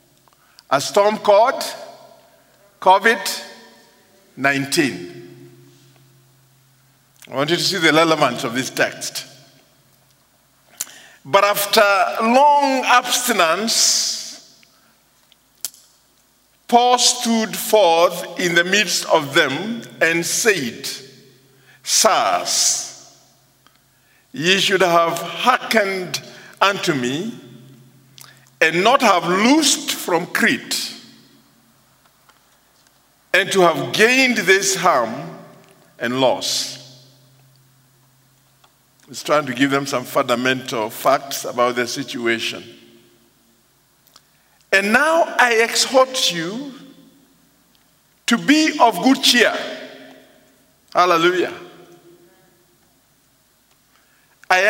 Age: 50-69